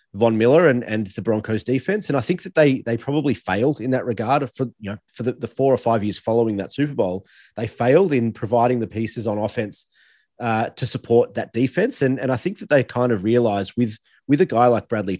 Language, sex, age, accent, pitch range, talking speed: English, male, 30-49, Australian, 105-125 Hz, 235 wpm